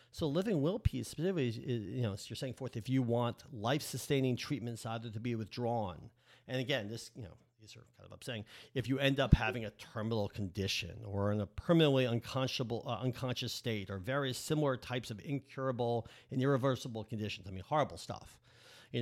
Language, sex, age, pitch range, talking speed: English, male, 50-69, 115-145 Hz, 190 wpm